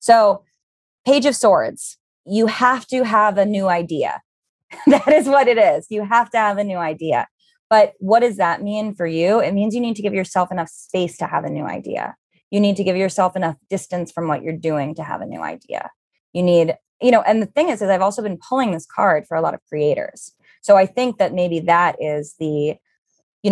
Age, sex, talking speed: 20-39, female, 225 wpm